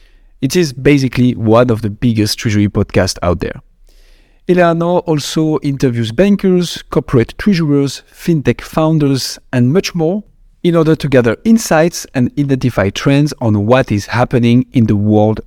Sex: male